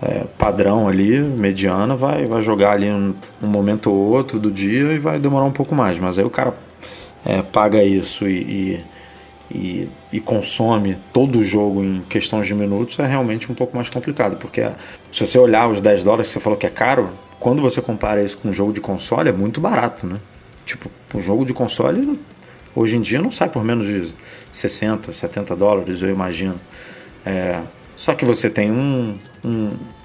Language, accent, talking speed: Portuguese, Brazilian, 185 wpm